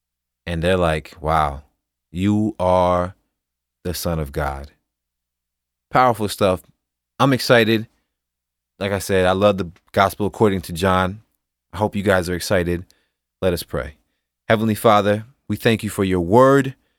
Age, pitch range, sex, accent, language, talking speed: 30-49, 70-110 Hz, male, American, English, 145 wpm